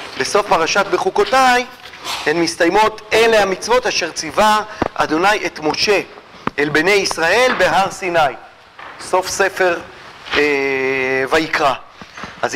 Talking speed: 105 wpm